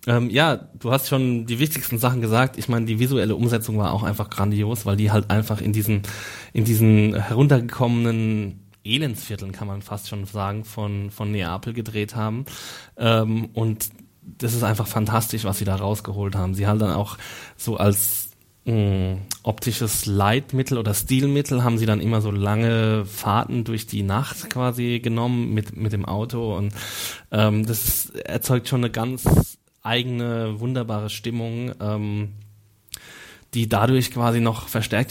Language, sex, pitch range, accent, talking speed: German, male, 105-120 Hz, German, 155 wpm